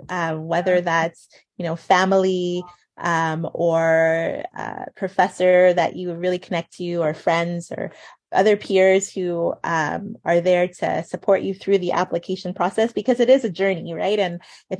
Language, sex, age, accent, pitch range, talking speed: English, female, 30-49, American, 170-195 Hz, 160 wpm